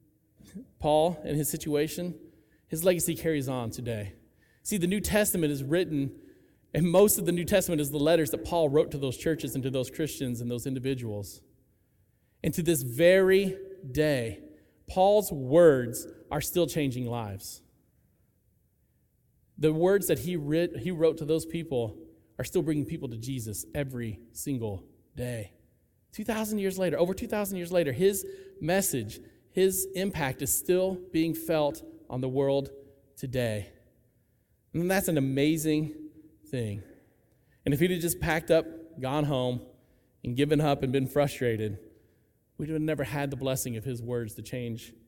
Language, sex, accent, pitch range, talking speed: English, male, American, 120-175 Hz, 155 wpm